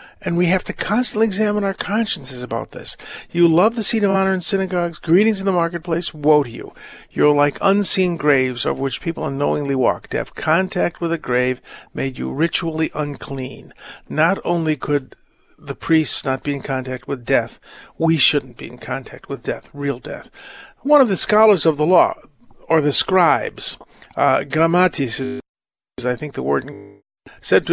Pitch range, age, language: 140-175 Hz, 50-69, English